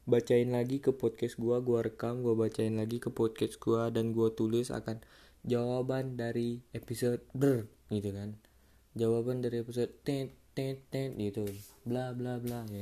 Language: Indonesian